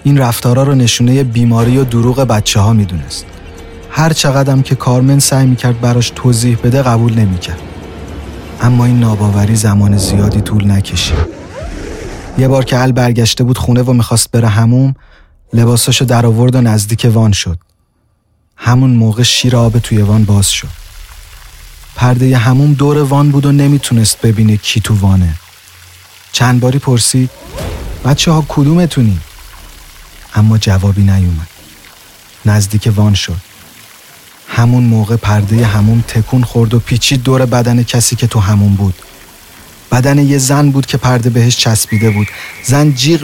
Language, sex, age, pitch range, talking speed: Persian, male, 30-49, 100-125 Hz, 140 wpm